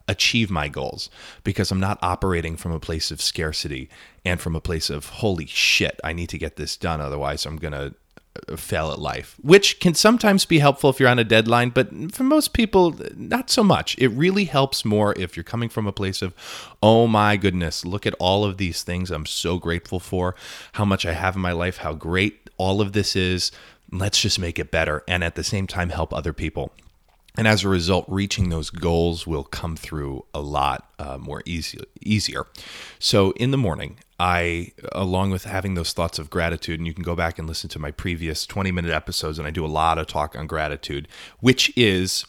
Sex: male